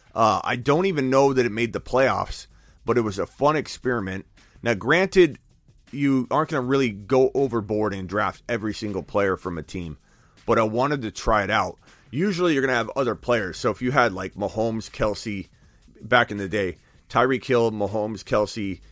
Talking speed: 195 wpm